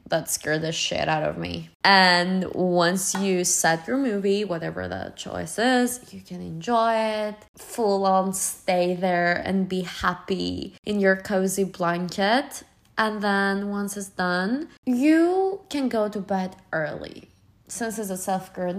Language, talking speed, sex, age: English, 150 wpm, female, 20-39